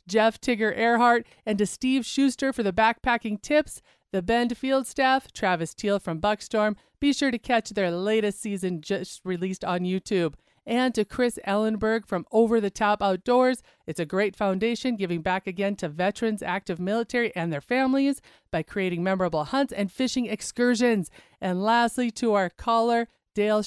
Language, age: English, 40-59